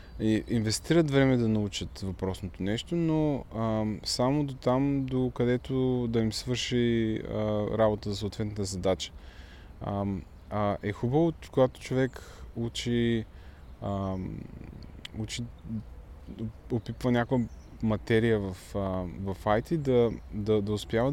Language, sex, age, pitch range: Bulgarian, male, 20-39, 95-120 Hz